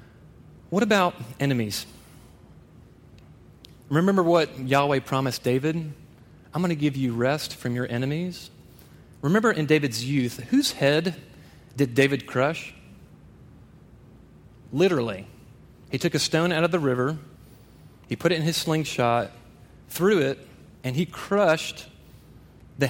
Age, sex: 30-49, male